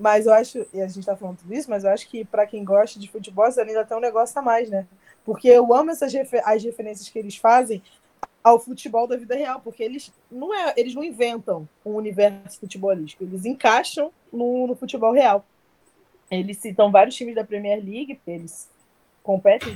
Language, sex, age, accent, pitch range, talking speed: Portuguese, female, 20-39, Brazilian, 195-245 Hz, 190 wpm